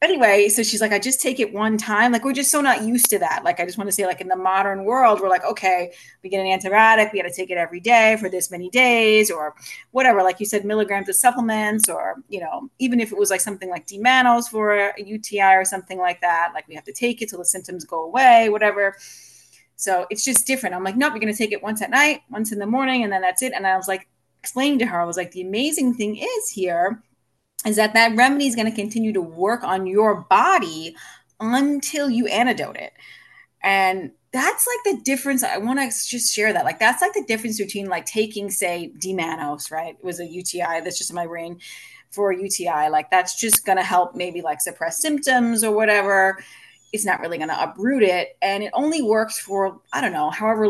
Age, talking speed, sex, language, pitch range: 30-49, 240 wpm, female, English, 185-240 Hz